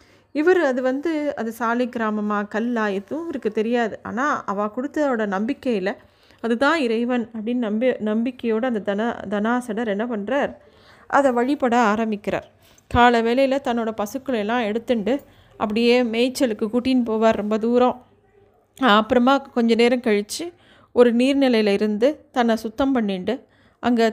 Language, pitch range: Tamil, 210-250 Hz